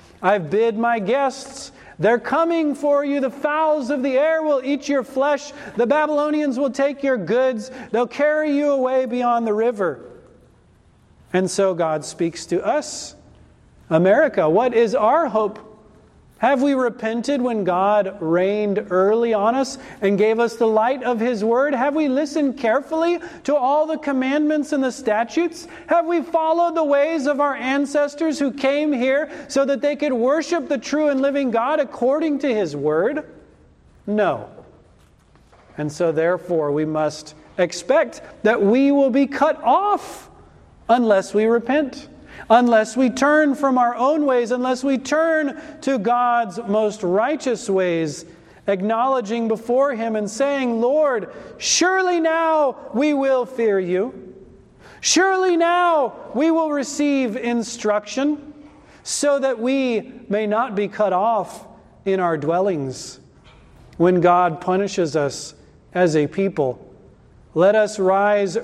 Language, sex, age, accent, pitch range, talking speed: English, male, 40-59, American, 210-290 Hz, 145 wpm